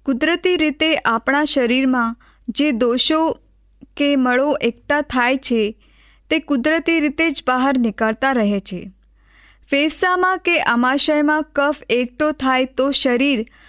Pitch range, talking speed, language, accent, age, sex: 245-295 Hz, 110 wpm, Gujarati, native, 20-39, female